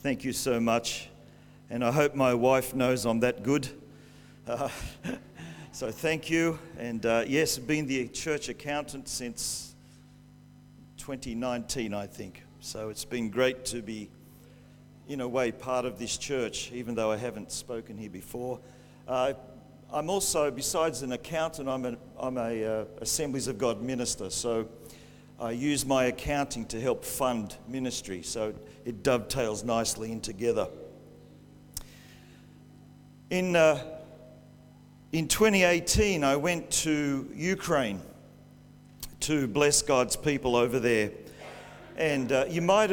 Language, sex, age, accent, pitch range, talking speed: English, male, 50-69, Australian, 115-150 Hz, 135 wpm